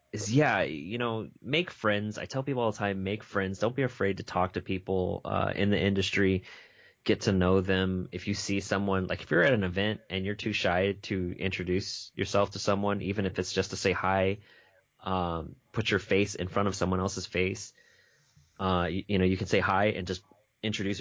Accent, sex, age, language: American, male, 20-39, English